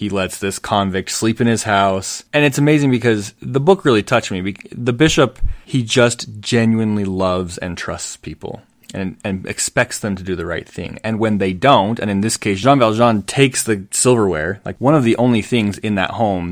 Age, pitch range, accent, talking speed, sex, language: 20-39, 95-115 Hz, American, 205 wpm, male, English